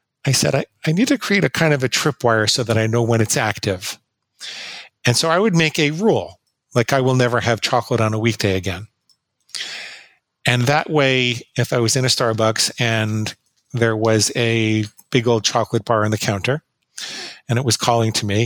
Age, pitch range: 40-59, 110-130 Hz